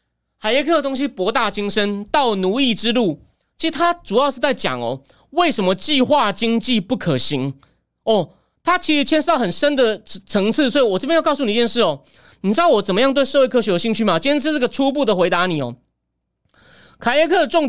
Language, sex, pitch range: Chinese, male, 200-280 Hz